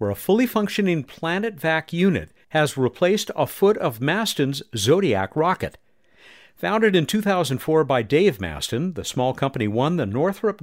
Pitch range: 110-170 Hz